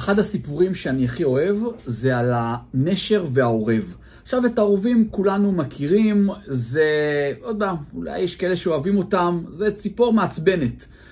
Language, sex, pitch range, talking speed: Hebrew, male, 135-195 Hz, 135 wpm